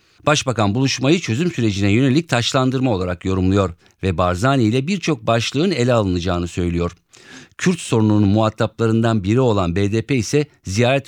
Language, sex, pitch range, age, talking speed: Turkish, male, 100-145 Hz, 50-69, 130 wpm